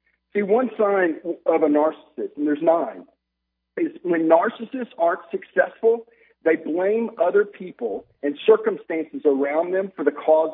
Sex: male